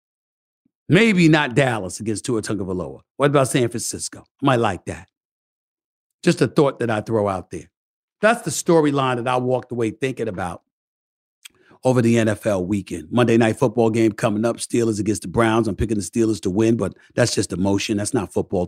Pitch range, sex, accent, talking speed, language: 105-130 Hz, male, American, 185 wpm, English